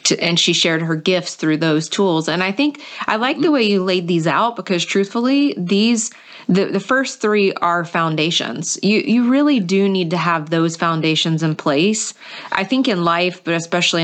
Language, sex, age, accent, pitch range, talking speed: English, female, 30-49, American, 170-205 Hz, 190 wpm